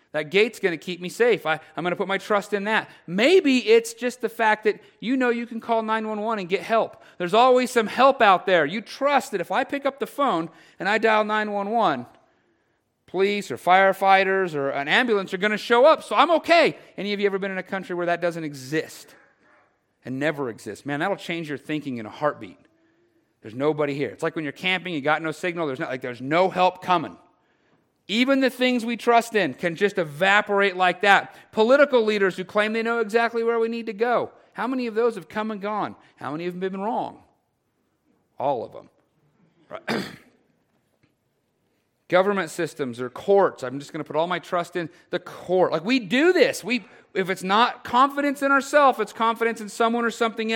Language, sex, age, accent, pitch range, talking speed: English, male, 40-59, American, 175-230 Hz, 210 wpm